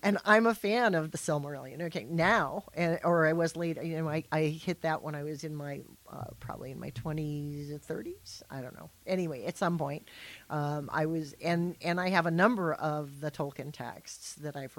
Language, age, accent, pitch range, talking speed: English, 50-69, American, 145-175 Hz, 220 wpm